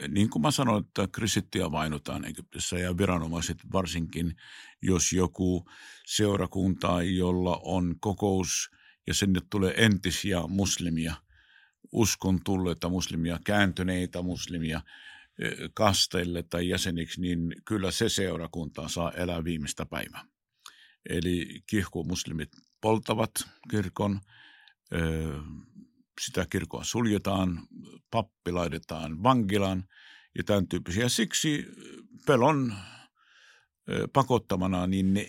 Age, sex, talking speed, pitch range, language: 50-69, male, 95 wpm, 85-105 Hz, Finnish